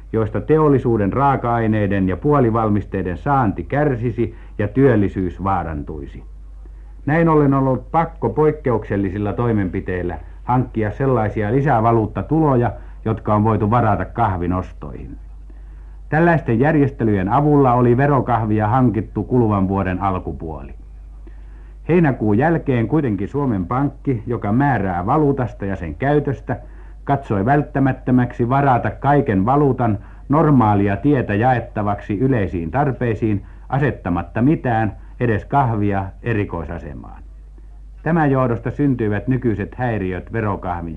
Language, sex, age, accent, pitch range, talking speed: Finnish, male, 60-79, native, 95-135 Hz, 95 wpm